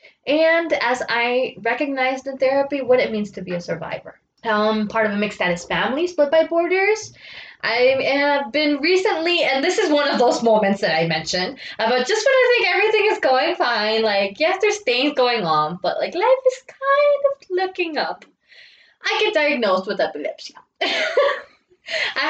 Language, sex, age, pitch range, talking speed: English, female, 20-39, 205-310 Hz, 180 wpm